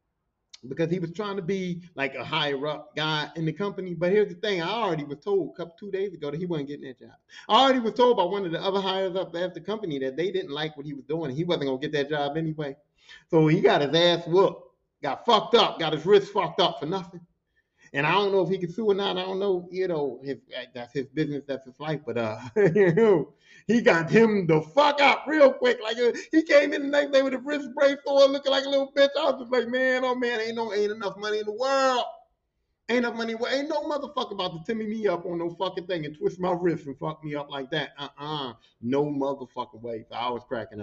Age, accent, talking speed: 30-49, American, 265 wpm